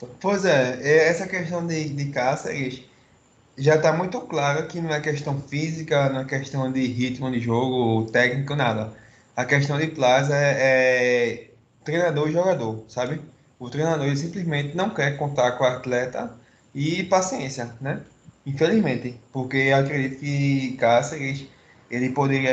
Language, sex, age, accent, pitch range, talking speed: Portuguese, male, 20-39, Brazilian, 120-145 Hz, 145 wpm